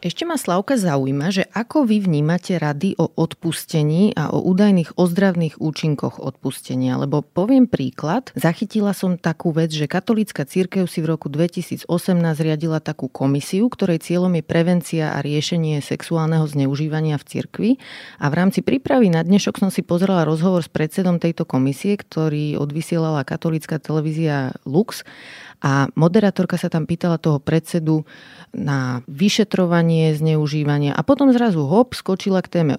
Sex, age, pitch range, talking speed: female, 30-49, 155-185 Hz, 145 wpm